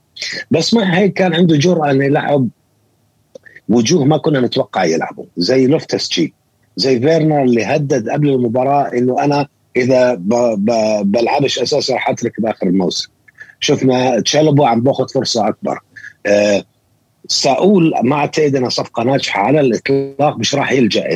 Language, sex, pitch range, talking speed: Arabic, male, 120-165 Hz, 145 wpm